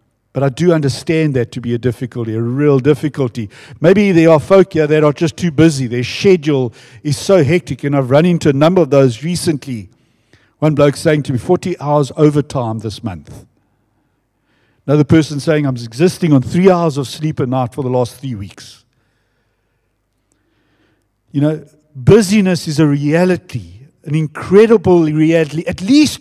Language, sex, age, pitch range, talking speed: English, male, 60-79, 125-195 Hz, 170 wpm